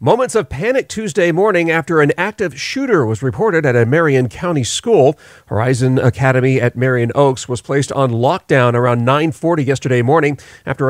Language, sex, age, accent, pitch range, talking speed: English, male, 40-59, American, 125-155 Hz, 165 wpm